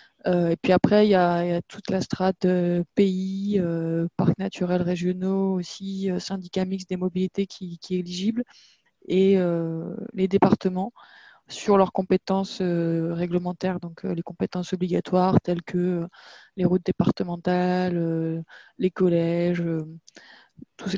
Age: 20-39